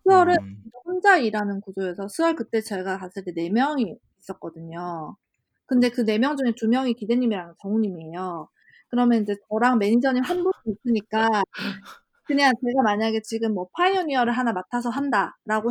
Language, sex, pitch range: Korean, female, 205-265 Hz